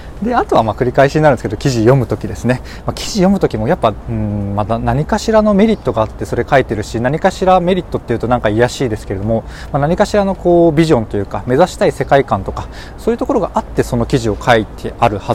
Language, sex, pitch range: Japanese, male, 110-175 Hz